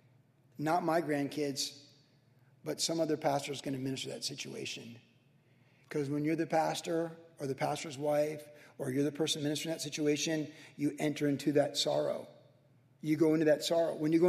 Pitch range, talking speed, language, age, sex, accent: 135-165 Hz, 175 wpm, English, 40-59, male, American